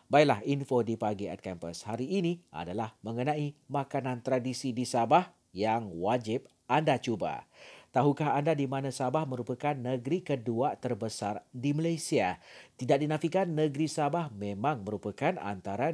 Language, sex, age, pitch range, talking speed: Malay, male, 40-59, 115-155 Hz, 135 wpm